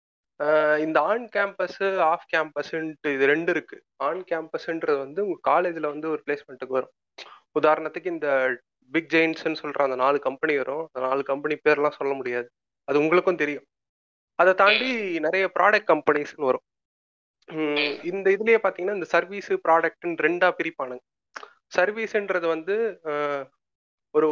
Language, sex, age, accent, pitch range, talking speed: Tamil, male, 30-49, native, 145-195 Hz, 130 wpm